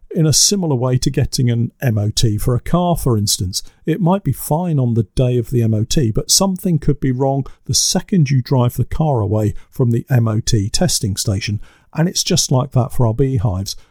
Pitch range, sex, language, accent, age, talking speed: 110-150 Hz, male, English, British, 50-69, 205 wpm